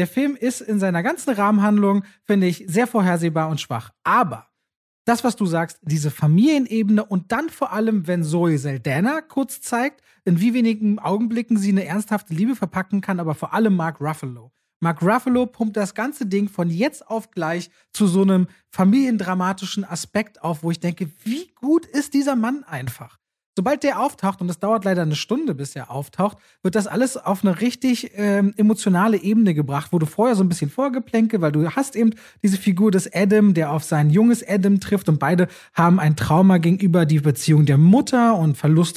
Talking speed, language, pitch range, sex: 190 wpm, German, 170-220 Hz, male